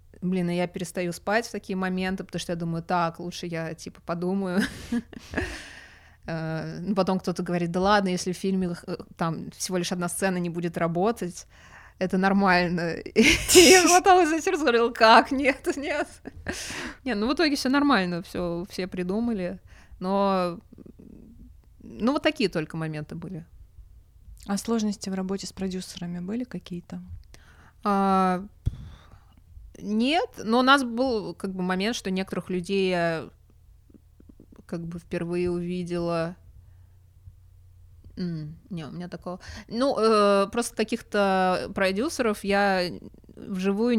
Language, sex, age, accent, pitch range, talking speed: Russian, female, 20-39, native, 165-200 Hz, 120 wpm